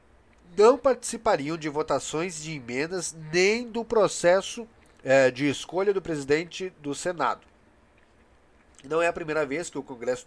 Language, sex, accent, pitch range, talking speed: Portuguese, male, Brazilian, 110-155 Hz, 140 wpm